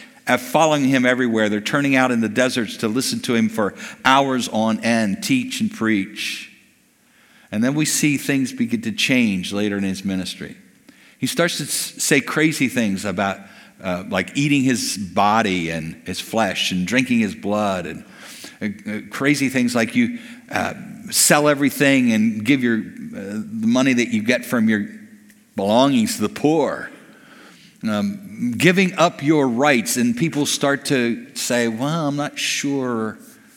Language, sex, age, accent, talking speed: English, male, 50-69, American, 160 wpm